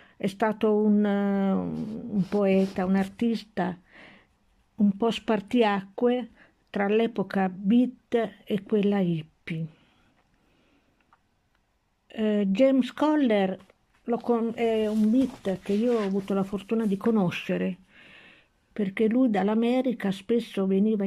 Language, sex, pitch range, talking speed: Italian, female, 190-225 Hz, 105 wpm